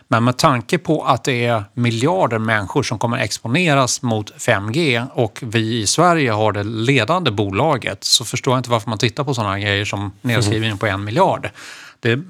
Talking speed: 185 wpm